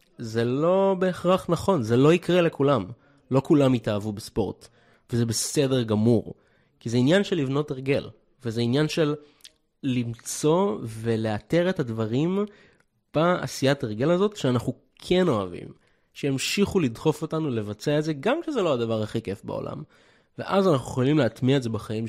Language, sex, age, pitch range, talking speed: Hebrew, male, 20-39, 110-145 Hz, 145 wpm